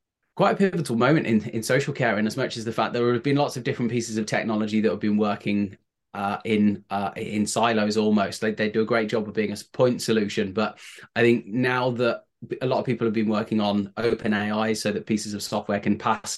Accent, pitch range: British, 105-120 Hz